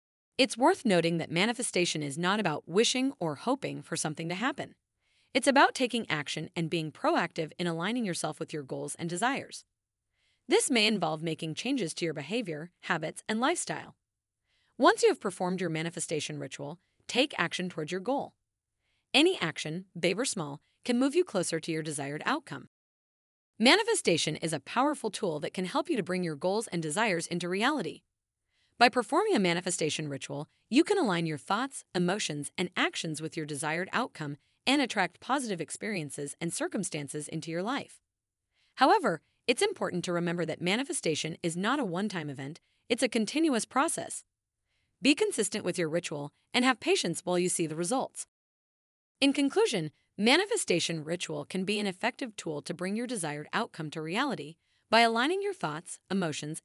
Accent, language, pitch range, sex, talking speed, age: American, English, 160-250 Hz, female, 170 wpm, 30-49